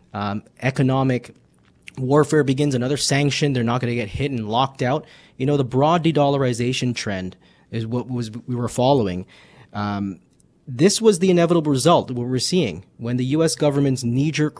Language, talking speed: English, 170 wpm